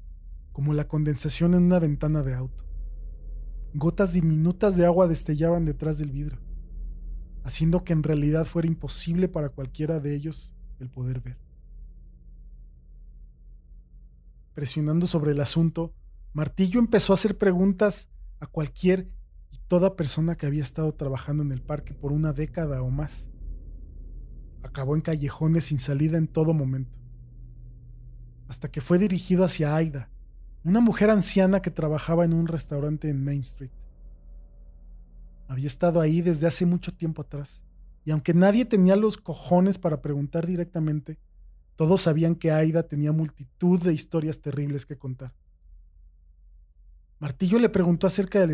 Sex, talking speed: male, 140 wpm